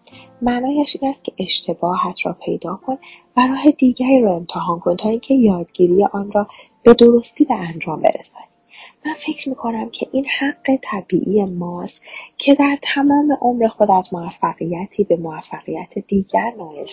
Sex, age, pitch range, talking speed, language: female, 30-49, 180-265 Hz, 150 wpm, Persian